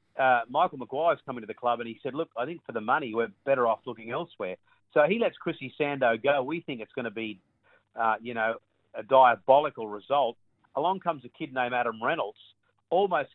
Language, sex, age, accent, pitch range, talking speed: English, male, 40-59, Australian, 115-150 Hz, 210 wpm